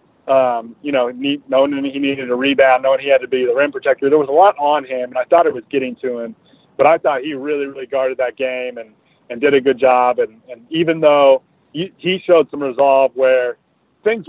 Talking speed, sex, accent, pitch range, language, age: 235 wpm, male, American, 130-170 Hz, English, 30-49